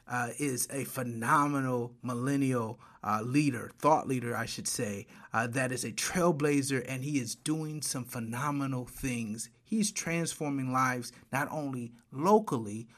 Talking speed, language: 140 wpm, English